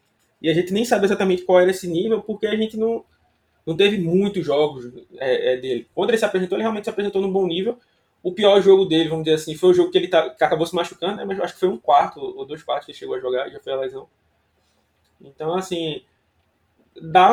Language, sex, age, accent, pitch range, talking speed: Portuguese, male, 20-39, Brazilian, 145-190 Hz, 250 wpm